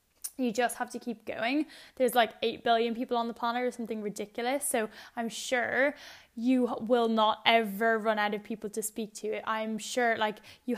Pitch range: 215-250 Hz